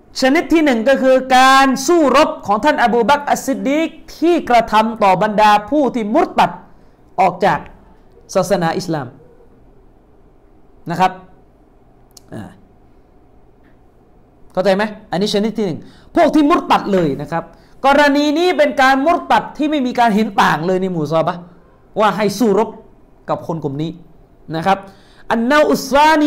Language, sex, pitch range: Thai, male, 200-285 Hz